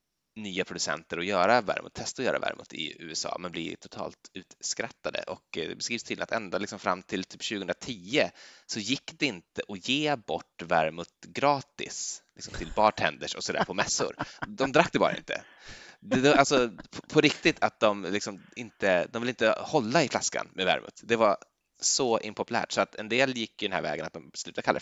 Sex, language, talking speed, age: male, Swedish, 195 wpm, 20-39